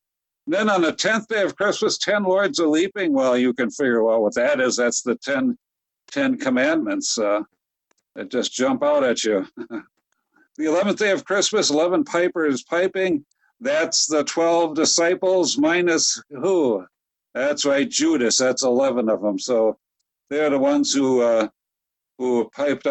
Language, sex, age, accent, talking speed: English, male, 60-79, American, 160 wpm